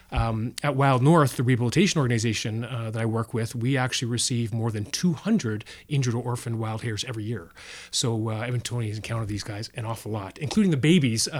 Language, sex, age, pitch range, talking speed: English, male, 30-49, 120-150 Hz, 195 wpm